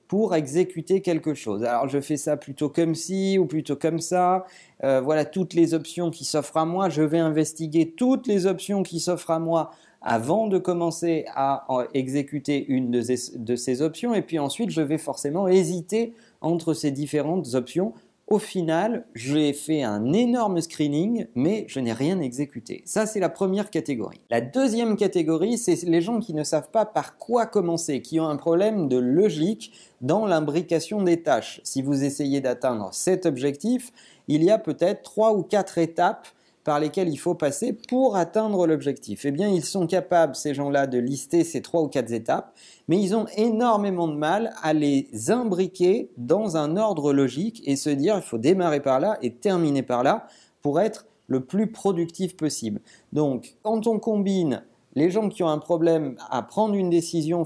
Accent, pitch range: French, 145-195 Hz